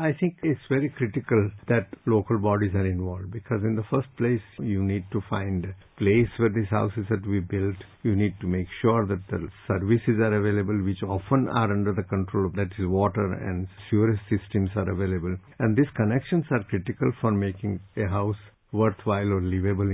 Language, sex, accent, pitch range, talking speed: English, male, Indian, 100-125 Hz, 195 wpm